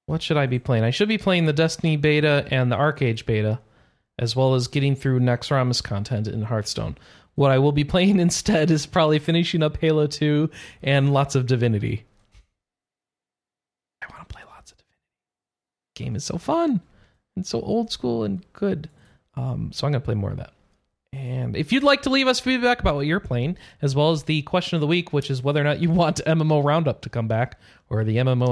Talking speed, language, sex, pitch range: 215 wpm, English, male, 125-185 Hz